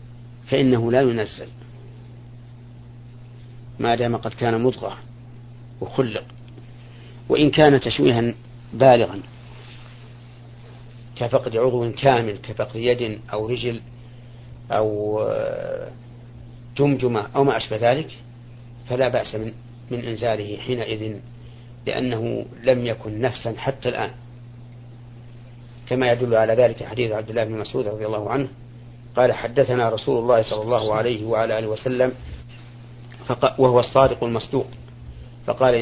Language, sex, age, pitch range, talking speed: Arabic, male, 50-69, 115-125 Hz, 105 wpm